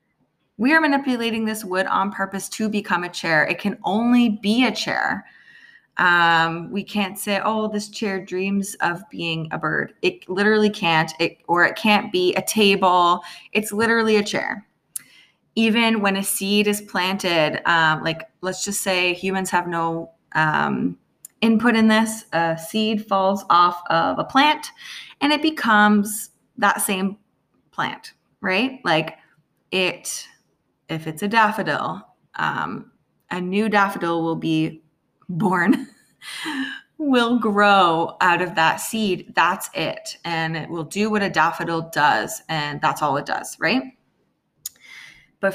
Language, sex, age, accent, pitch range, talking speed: English, female, 20-39, American, 175-225 Hz, 145 wpm